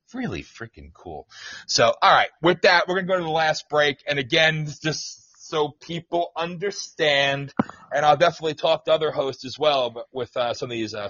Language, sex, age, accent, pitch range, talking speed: English, male, 40-59, American, 125-175 Hz, 205 wpm